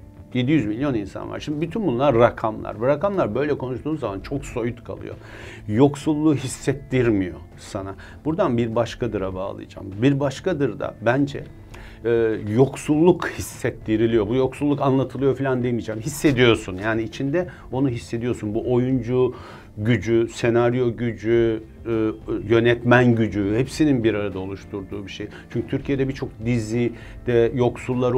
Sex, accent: male, native